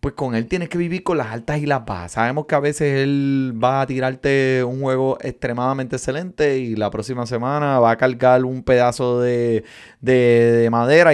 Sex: male